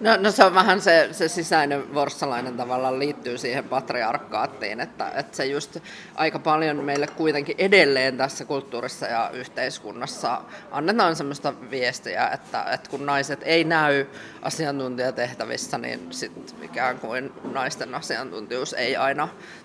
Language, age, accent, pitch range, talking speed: Finnish, 20-39, native, 140-170 Hz, 135 wpm